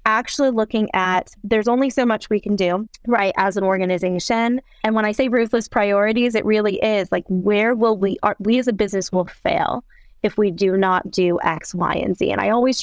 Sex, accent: female, American